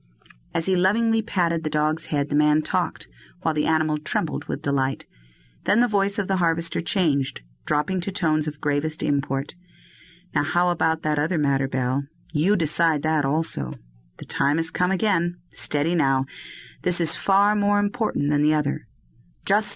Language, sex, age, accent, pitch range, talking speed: English, female, 40-59, American, 145-185 Hz, 170 wpm